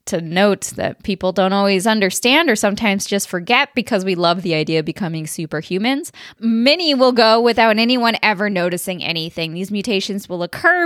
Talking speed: 170 wpm